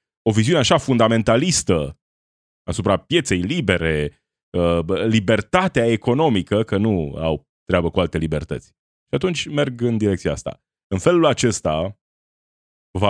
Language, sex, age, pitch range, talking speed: Romanian, male, 30-49, 90-120 Hz, 120 wpm